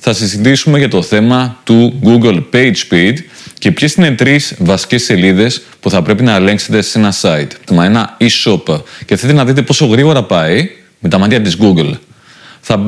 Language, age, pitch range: Greek, 30-49, 105-150 Hz